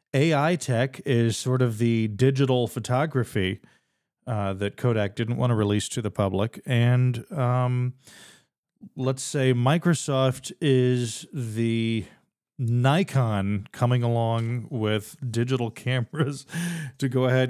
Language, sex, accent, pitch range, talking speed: English, male, American, 105-130 Hz, 115 wpm